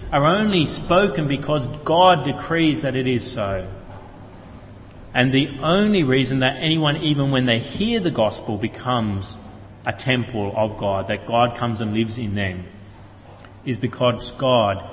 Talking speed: 150 wpm